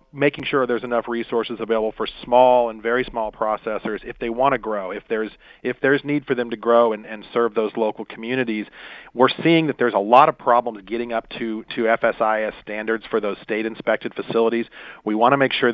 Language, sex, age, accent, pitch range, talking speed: English, male, 40-59, American, 105-125 Hz, 210 wpm